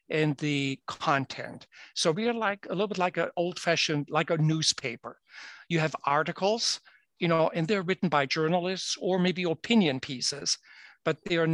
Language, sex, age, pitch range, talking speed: English, male, 60-79, 145-170 Hz, 175 wpm